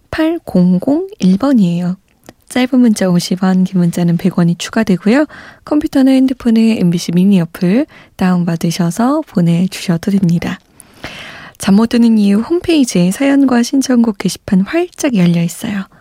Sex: female